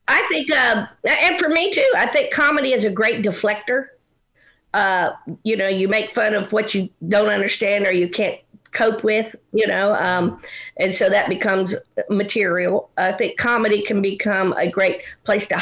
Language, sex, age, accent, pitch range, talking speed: English, female, 50-69, American, 195-250 Hz, 180 wpm